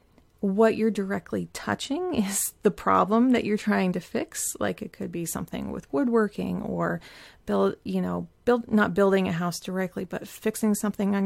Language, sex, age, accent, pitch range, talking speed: English, female, 30-49, American, 180-220 Hz, 175 wpm